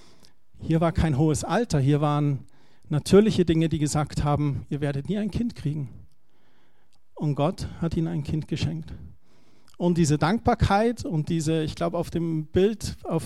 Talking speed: 165 wpm